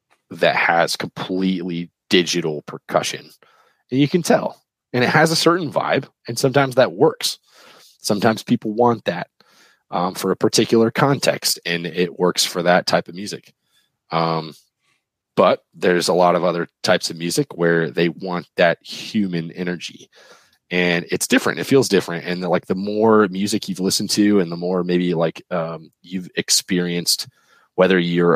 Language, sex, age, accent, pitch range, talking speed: English, male, 30-49, American, 80-105 Hz, 160 wpm